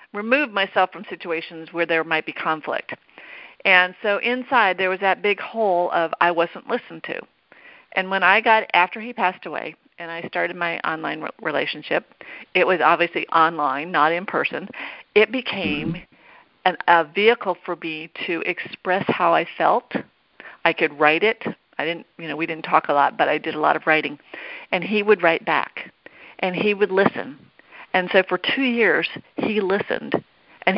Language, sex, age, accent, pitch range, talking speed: English, female, 50-69, American, 165-215 Hz, 180 wpm